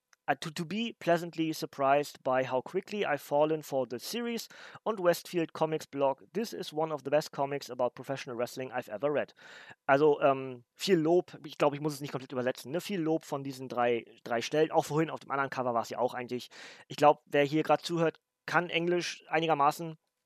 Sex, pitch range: male, 135-170 Hz